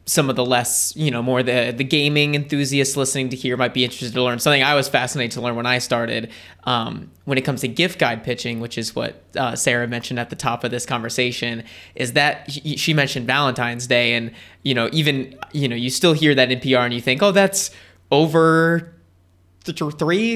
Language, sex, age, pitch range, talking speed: English, male, 20-39, 120-145 Hz, 215 wpm